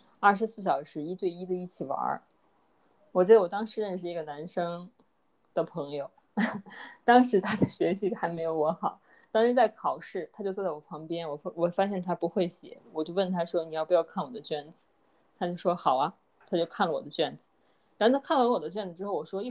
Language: Chinese